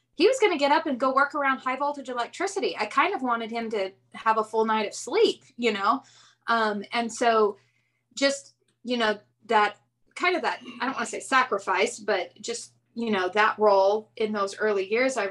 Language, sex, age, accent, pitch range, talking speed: English, female, 20-39, American, 205-255 Hz, 210 wpm